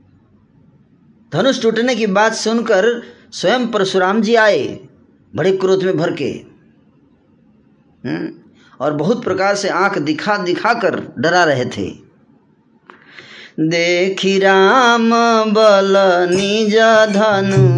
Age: 20-39